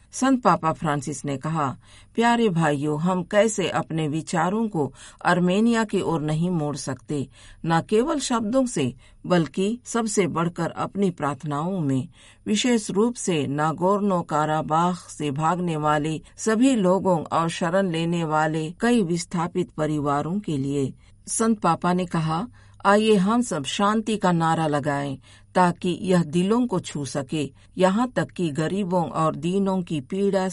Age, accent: 50-69, native